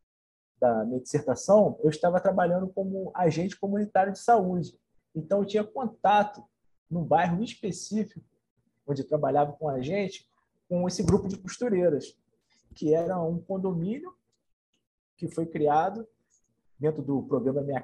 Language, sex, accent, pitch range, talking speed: Portuguese, male, Brazilian, 145-195 Hz, 135 wpm